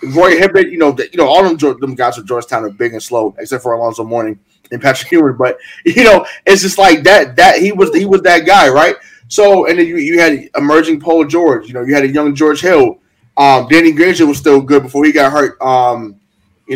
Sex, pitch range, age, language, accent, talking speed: male, 135-195 Hz, 20-39, English, American, 245 wpm